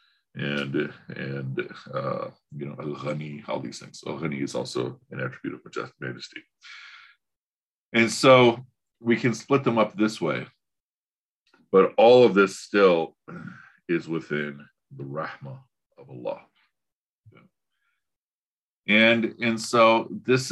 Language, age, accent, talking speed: English, 50-69, American, 120 wpm